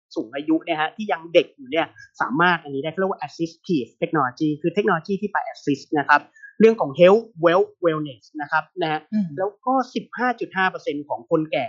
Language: Thai